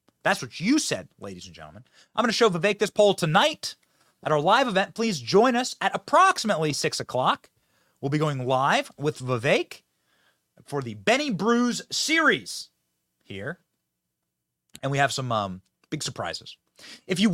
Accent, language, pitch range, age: American, English, 120-205 Hz, 30-49